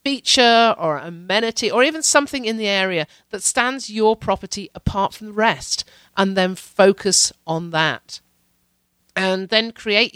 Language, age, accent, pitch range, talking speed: English, 50-69, British, 170-220 Hz, 150 wpm